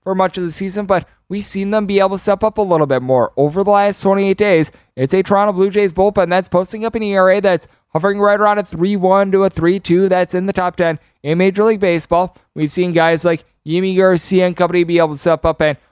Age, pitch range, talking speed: 20-39, 155-195 Hz, 250 wpm